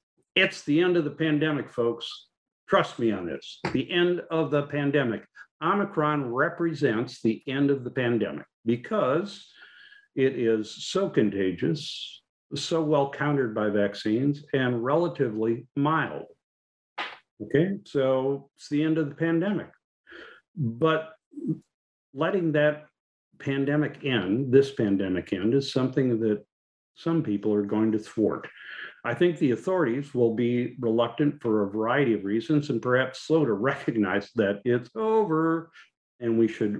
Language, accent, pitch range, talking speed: English, American, 110-150 Hz, 135 wpm